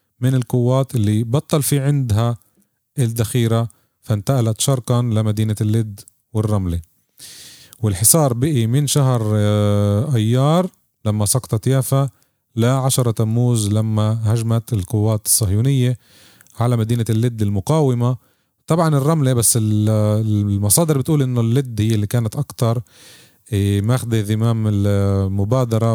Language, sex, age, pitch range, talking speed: Arabic, male, 30-49, 105-130 Hz, 105 wpm